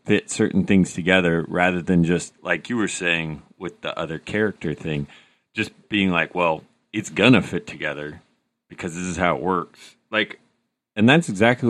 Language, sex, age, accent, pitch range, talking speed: English, male, 30-49, American, 85-115 Hz, 180 wpm